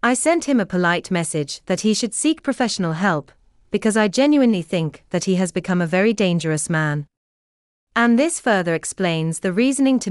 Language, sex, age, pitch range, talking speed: English, female, 30-49, 160-235 Hz, 185 wpm